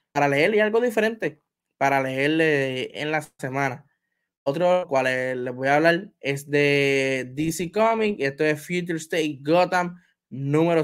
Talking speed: 150 wpm